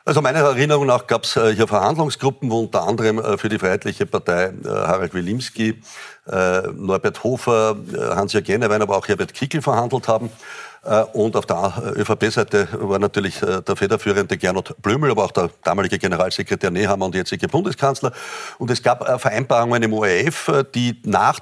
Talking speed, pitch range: 170 wpm, 110-135 Hz